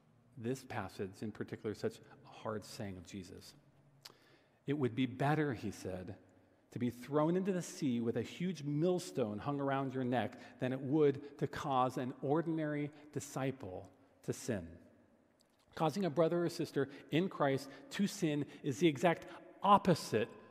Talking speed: 155 wpm